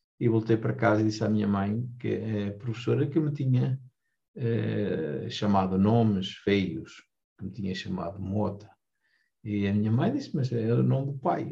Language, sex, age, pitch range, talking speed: Portuguese, male, 50-69, 110-145 Hz, 190 wpm